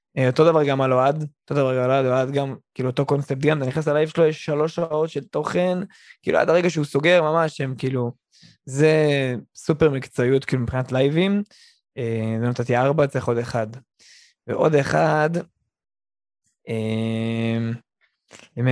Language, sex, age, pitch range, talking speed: Hebrew, male, 20-39, 130-190 Hz, 155 wpm